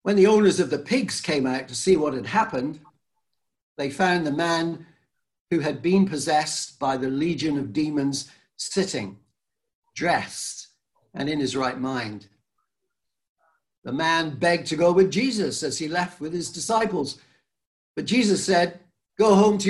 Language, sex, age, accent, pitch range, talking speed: English, male, 60-79, British, 135-185 Hz, 160 wpm